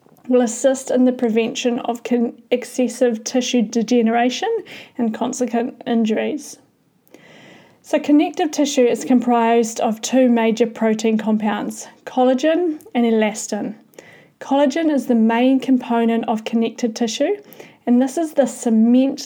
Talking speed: 120 wpm